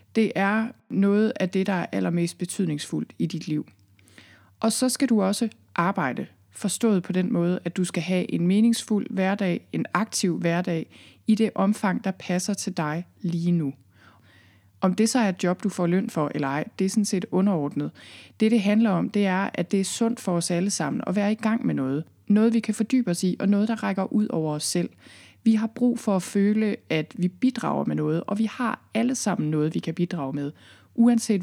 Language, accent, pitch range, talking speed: Danish, native, 155-210 Hz, 220 wpm